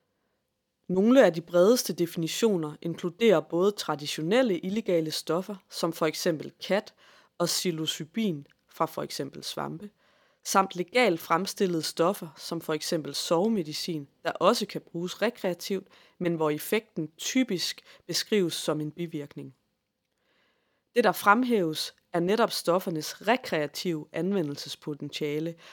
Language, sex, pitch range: Danish, female, 155-195 Hz